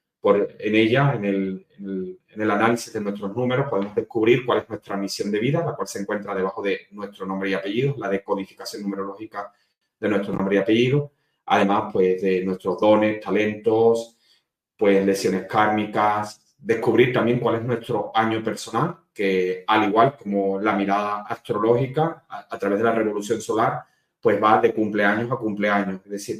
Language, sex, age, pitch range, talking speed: Spanish, male, 30-49, 100-120 Hz, 160 wpm